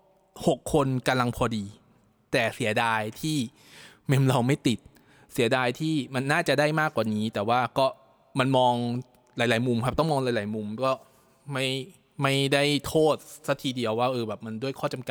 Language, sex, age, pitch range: Thai, male, 20-39, 115-145 Hz